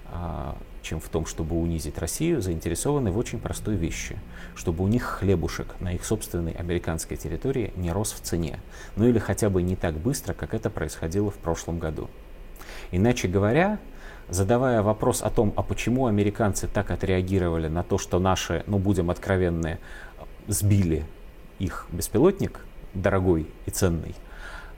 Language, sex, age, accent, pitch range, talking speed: Russian, male, 30-49, native, 85-105 Hz, 150 wpm